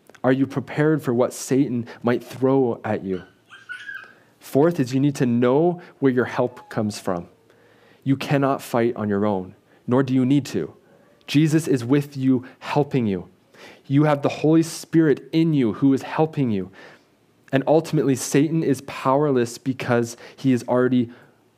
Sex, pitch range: male, 110-135 Hz